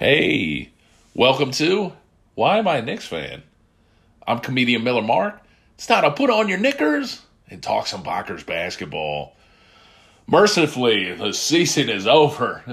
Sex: male